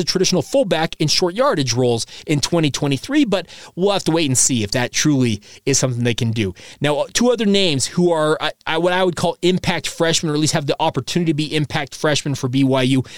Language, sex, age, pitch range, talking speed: English, male, 20-39, 140-175 Hz, 220 wpm